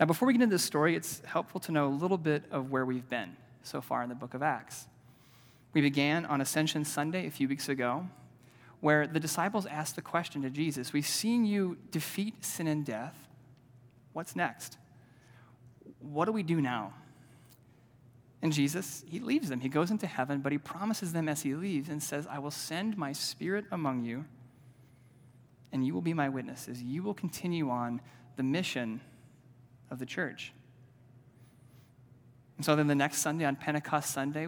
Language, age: English, 30-49